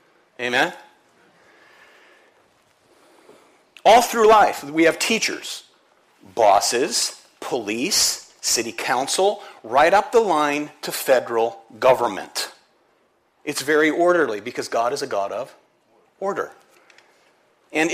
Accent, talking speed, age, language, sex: American, 95 wpm, 40-59, English, male